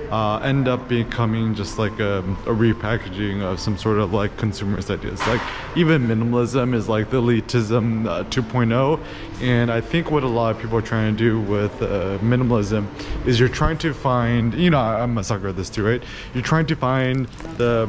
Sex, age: male, 20-39